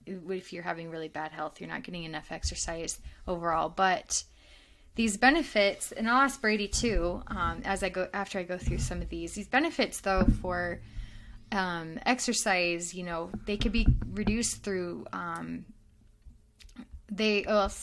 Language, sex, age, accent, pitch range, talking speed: English, female, 20-39, American, 170-205 Hz, 160 wpm